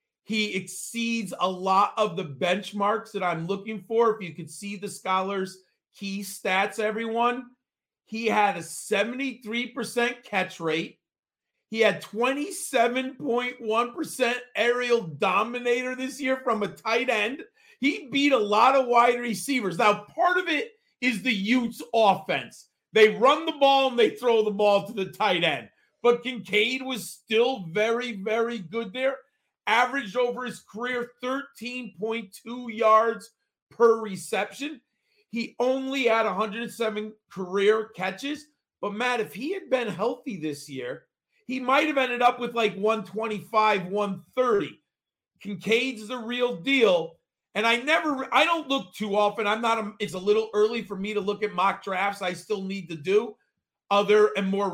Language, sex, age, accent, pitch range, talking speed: English, male, 40-59, American, 200-250 Hz, 150 wpm